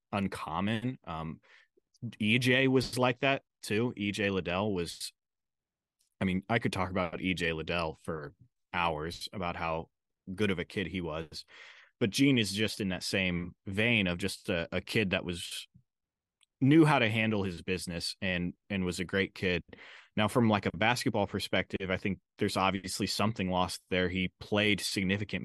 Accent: American